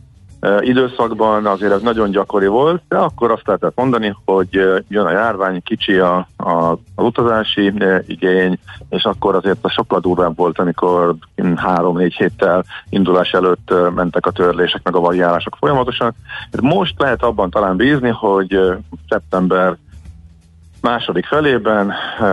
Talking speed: 135 wpm